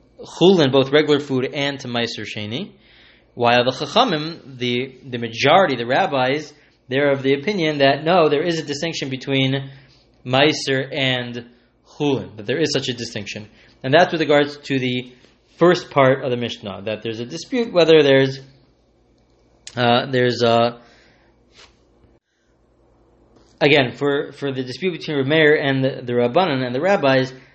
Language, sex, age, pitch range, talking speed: English, male, 20-39, 125-155 Hz, 155 wpm